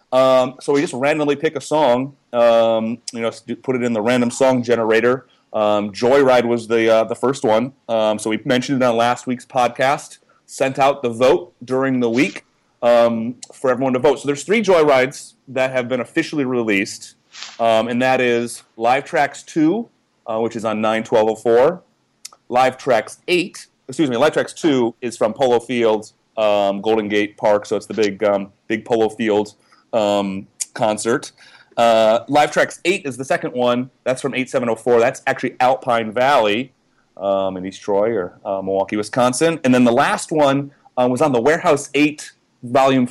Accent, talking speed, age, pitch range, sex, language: American, 185 wpm, 30-49, 110-135 Hz, male, English